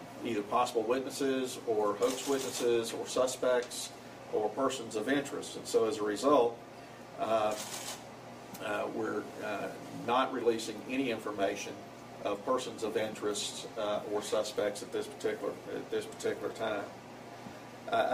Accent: American